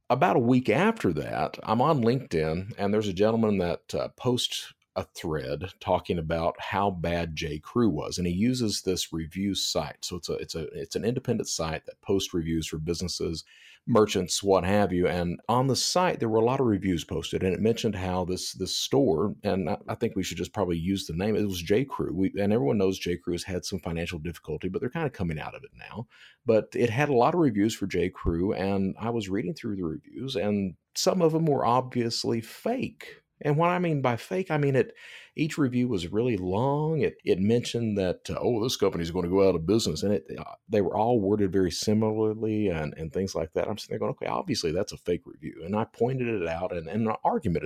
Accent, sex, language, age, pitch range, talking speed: American, male, English, 40-59, 90-120 Hz, 230 wpm